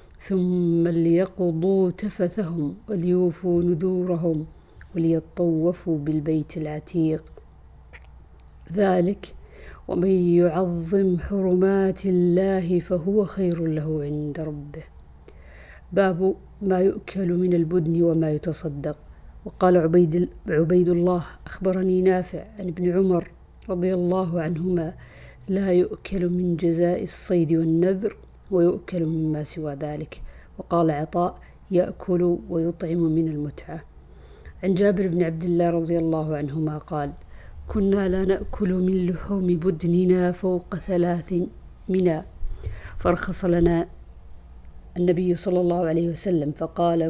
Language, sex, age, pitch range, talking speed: Arabic, female, 50-69, 160-185 Hz, 100 wpm